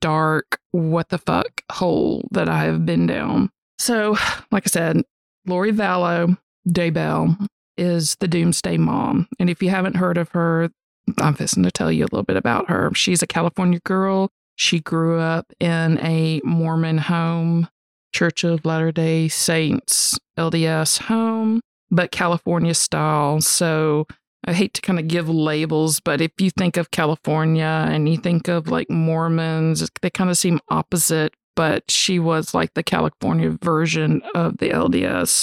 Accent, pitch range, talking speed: American, 160-180 Hz, 155 wpm